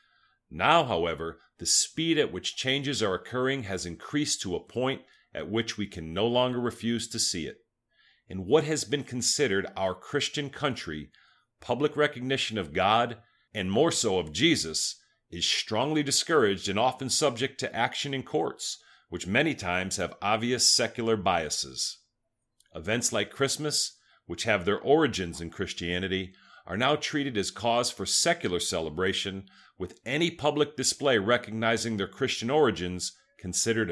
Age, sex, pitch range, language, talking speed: 40-59, male, 95-135 Hz, English, 150 wpm